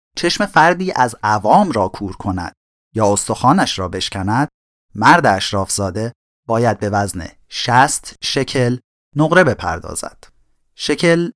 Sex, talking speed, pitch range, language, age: male, 115 wpm, 100-145 Hz, Persian, 30-49